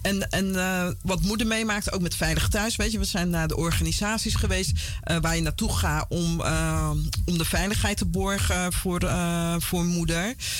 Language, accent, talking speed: Dutch, Dutch, 190 wpm